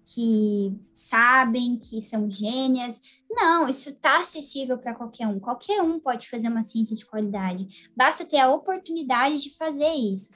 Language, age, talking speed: Portuguese, 10-29, 155 wpm